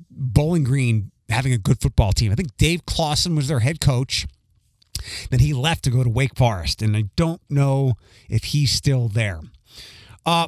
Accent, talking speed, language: American, 185 wpm, English